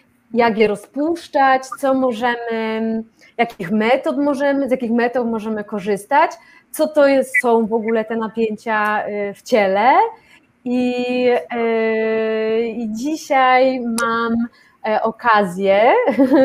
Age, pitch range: 30-49, 220-265 Hz